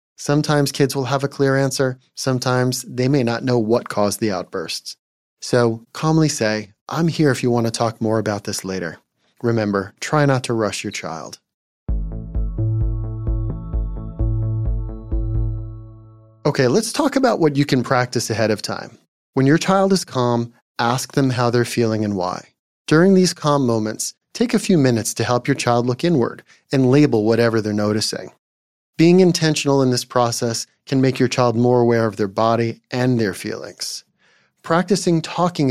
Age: 30-49